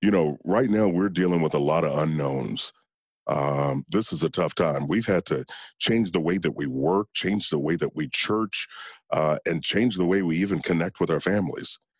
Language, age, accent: English, 40-59, American